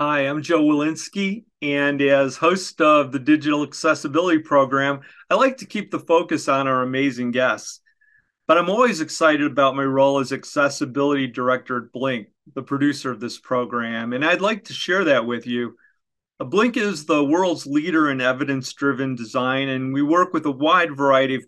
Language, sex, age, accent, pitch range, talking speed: English, male, 40-59, American, 130-160 Hz, 175 wpm